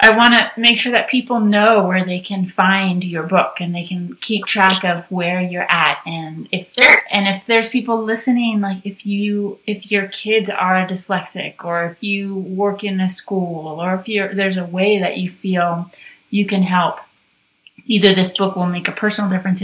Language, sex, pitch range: English, female, 175-200 Hz